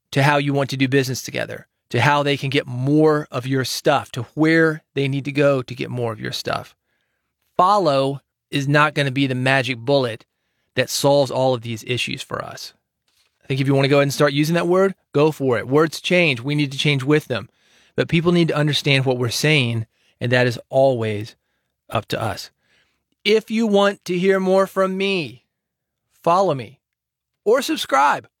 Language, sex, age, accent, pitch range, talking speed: English, male, 30-49, American, 135-165 Hz, 205 wpm